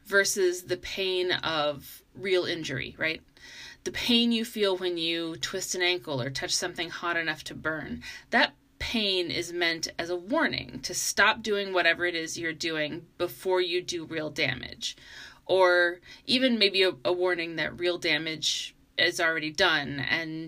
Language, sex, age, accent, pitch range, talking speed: English, female, 30-49, American, 160-205 Hz, 165 wpm